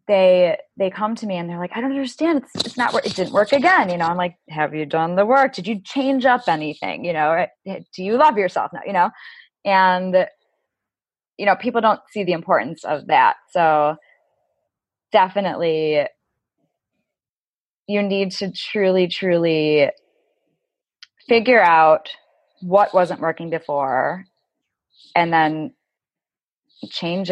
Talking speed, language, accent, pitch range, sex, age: 150 wpm, English, American, 165-210 Hz, female, 20-39